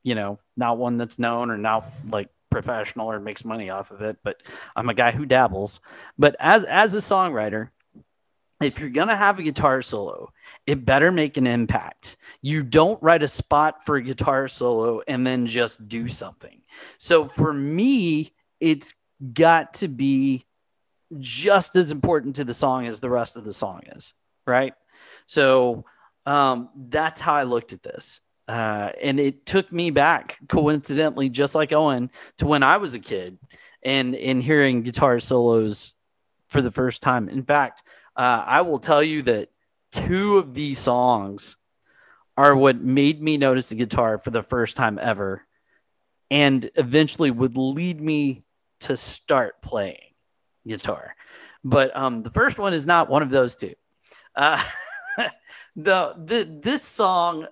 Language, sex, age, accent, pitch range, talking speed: English, male, 30-49, American, 120-155 Hz, 165 wpm